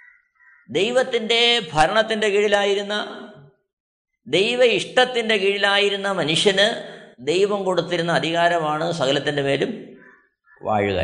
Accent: native